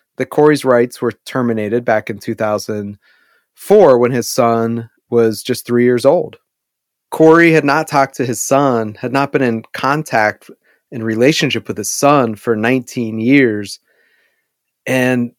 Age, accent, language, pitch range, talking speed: 30-49, American, English, 120-155 Hz, 145 wpm